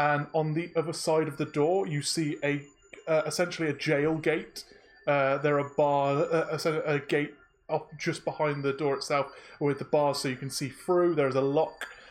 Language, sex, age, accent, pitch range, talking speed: English, male, 20-39, British, 145-180 Hz, 210 wpm